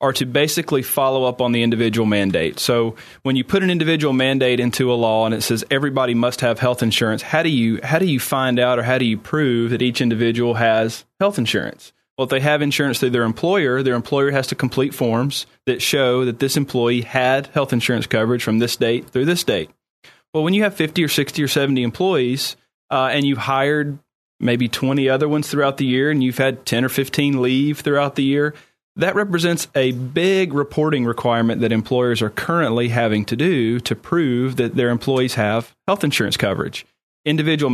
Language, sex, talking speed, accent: English, male, 205 wpm, American